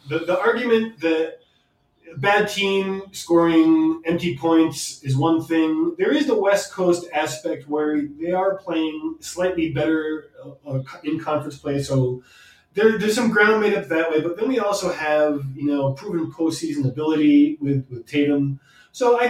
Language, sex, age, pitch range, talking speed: English, male, 20-39, 140-190 Hz, 155 wpm